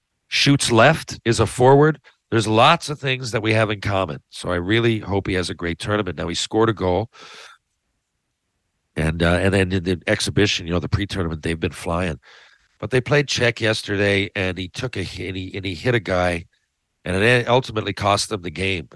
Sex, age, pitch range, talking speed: male, 50-69, 90-115 Hz, 205 wpm